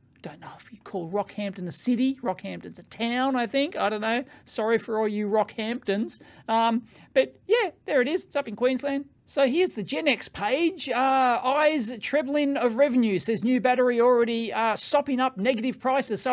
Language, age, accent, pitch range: English, 40-59, Australian, 200-260 Hz